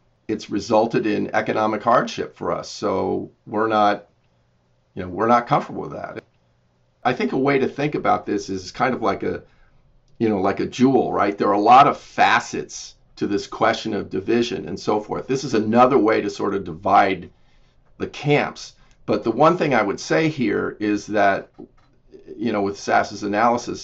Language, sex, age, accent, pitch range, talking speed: English, male, 50-69, American, 100-120 Hz, 190 wpm